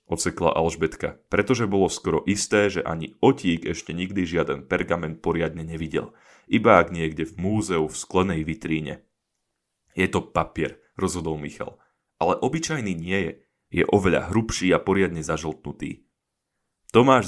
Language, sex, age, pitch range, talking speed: Slovak, male, 30-49, 80-105 Hz, 135 wpm